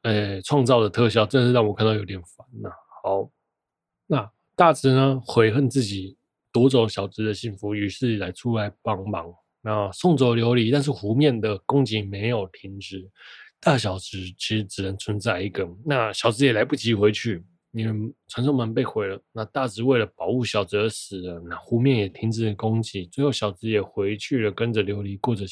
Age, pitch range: 20-39, 100-120 Hz